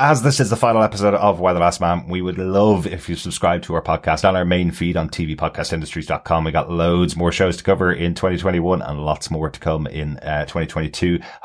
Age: 30-49